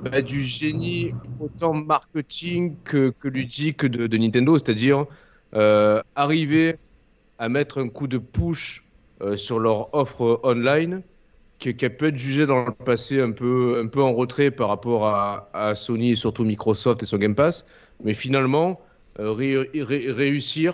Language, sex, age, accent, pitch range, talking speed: French, male, 30-49, French, 110-140 Hz, 165 wpm